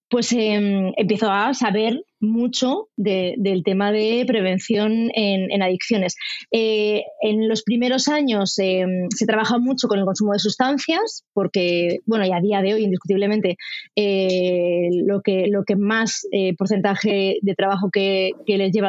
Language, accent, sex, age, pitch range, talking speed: Spanish, Spanish, female, 20-39, 195-245 Hz, 160 wpm